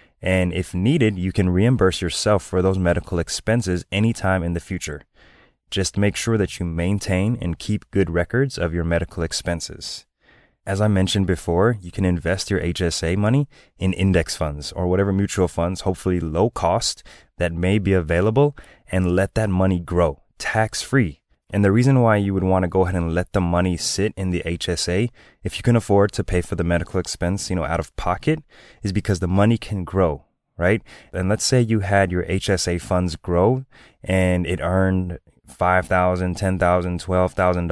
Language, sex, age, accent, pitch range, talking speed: English, male, 20-39, American, 90-105 Hz, 180 wpm